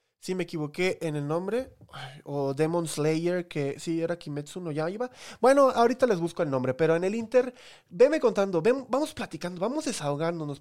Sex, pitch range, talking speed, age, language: male, 145-190 Hz, 190 wpm, 20-39, Spanish